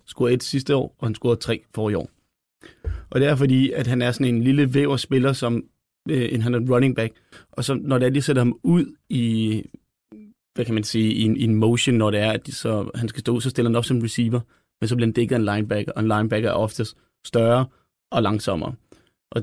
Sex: male